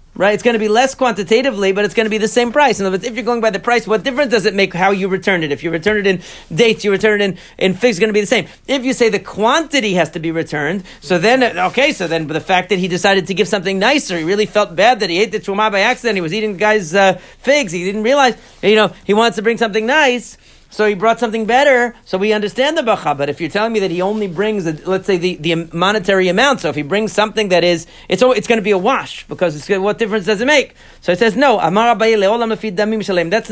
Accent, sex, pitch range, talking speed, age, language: American, male, 185-235 Hz, 270 wpm, 40-59, English